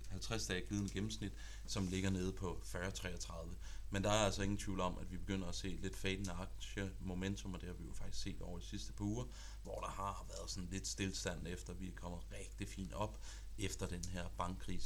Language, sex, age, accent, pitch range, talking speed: Danish, male, 30-49, native, 90-105 Hz, 225 wpm